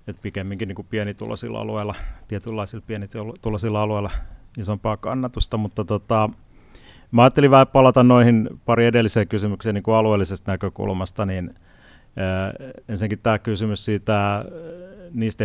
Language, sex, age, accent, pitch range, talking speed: Finnish, male, 30-49, native, 100-110 Hz, 115 wpm